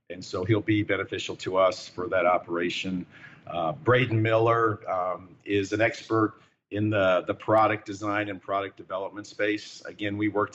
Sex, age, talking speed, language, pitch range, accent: male, 50-69, 165 wpm, English, 100-110 Hz, American